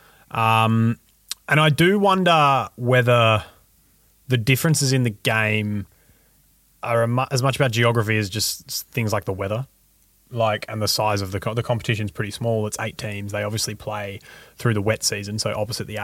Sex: male